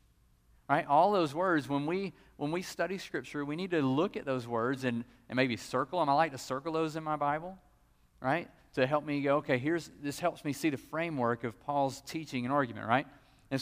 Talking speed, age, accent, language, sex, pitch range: 220 wpm, 40-59, American, English, male, 125-165 Hz